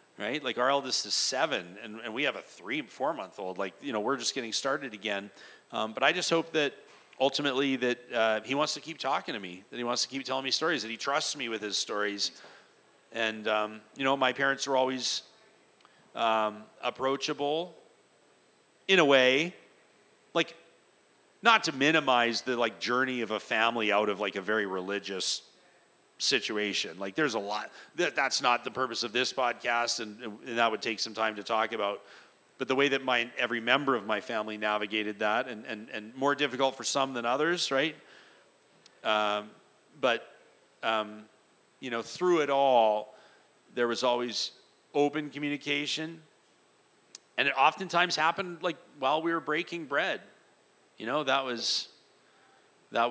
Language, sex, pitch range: English, male, 110-140 Hz